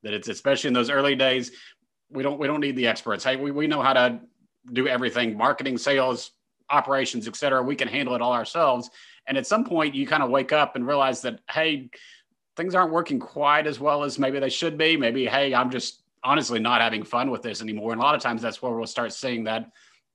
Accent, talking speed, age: American, 230 wpm, 30-49